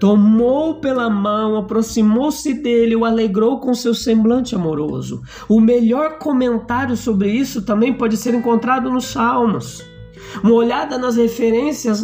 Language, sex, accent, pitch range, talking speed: Portuguese, male, Brazilian, 180-245 Hz, 130 wpm